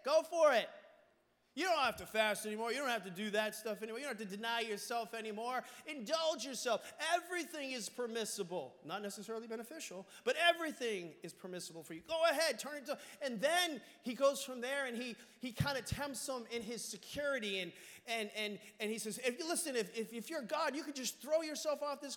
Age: 30-49